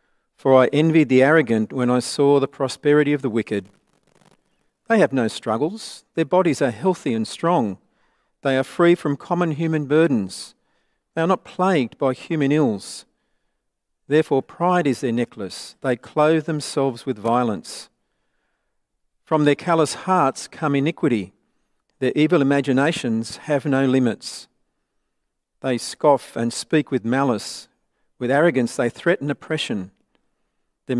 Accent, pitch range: Australian, 130-160 Hz